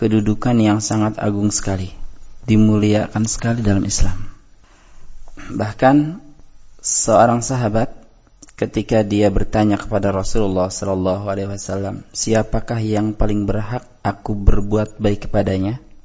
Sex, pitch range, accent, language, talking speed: male, 105-130 Hz, native, Indonesian, 105 wpm